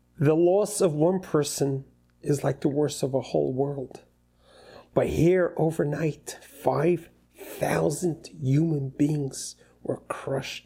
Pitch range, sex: 95-155 Hz, male